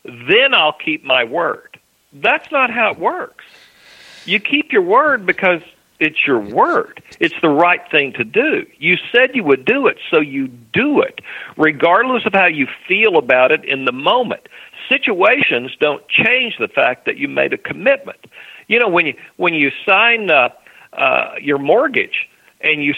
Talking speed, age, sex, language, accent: 175 wpm, 50-69, male, English, American